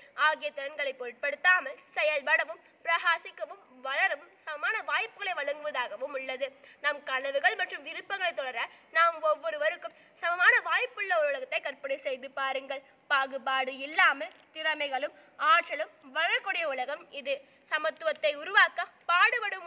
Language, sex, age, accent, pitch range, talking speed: Tamil, female, 20-39, native, 285-350 Hz, 35 wpm